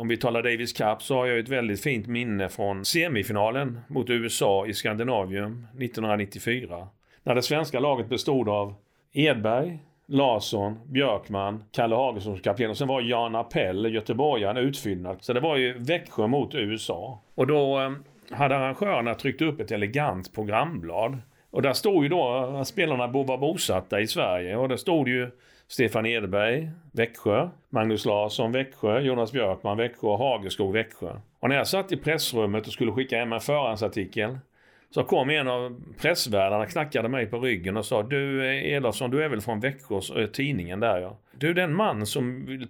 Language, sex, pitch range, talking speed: Swedish, male, 110-135 Hz, 165 wpm